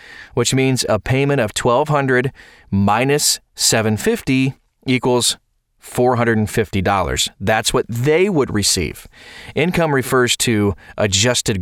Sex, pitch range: male, 105-130 Hz